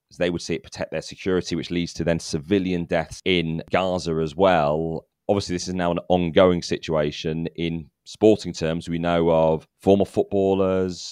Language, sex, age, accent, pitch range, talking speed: English, male, 30-49, British, 80-90 Hz, 175 wpm